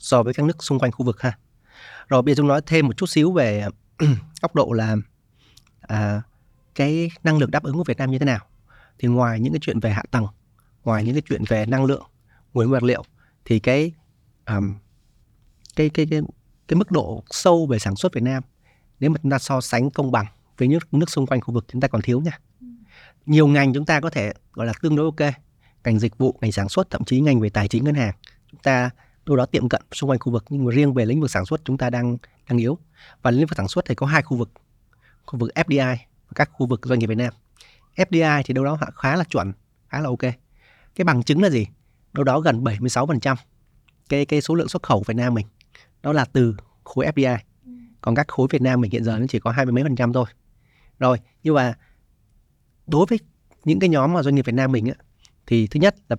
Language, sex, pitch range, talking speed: Vietnamese, male, 115-145 Hz, 240 wpm